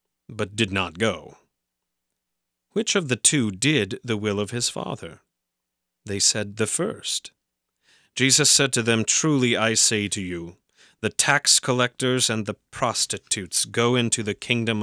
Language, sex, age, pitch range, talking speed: English, male, 30-49, 95-130 Hz, 150 wpm